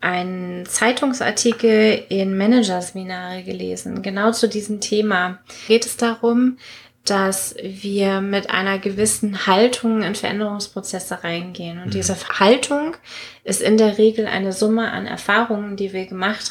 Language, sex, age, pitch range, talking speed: German, female, 20-39, 195-225 Hz, 125 wpm